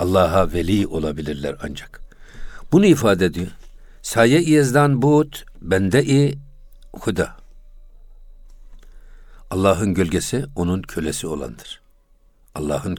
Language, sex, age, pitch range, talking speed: Turkish, male, 60-79, 90-135 Hz, 85 wpm